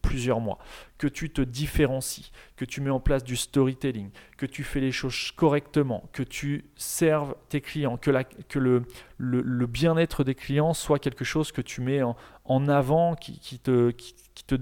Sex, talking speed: male, 195 wpm